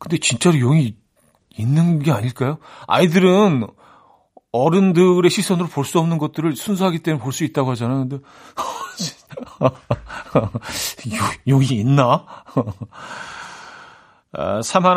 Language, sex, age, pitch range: Korean, male, 40-59, 125-170 Hz